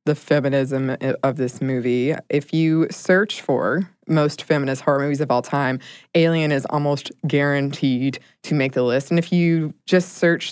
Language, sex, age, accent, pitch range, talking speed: English, female, 20-39, American, 140-175 Hz, 165 wpm